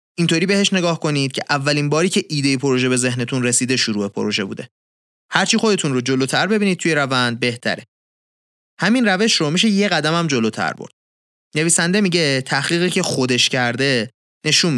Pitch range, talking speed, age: 125-165 Hz, 160 wpm, 30-49